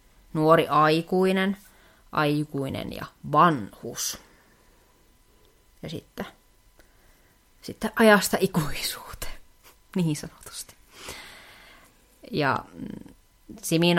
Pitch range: 135-165 Hz